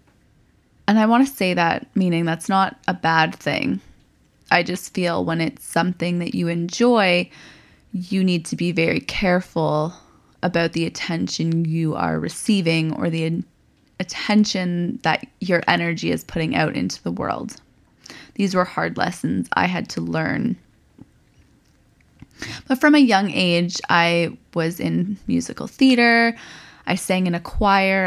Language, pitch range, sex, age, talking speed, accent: English, 170-205 Hz, female, 20-39, 145 wpm, American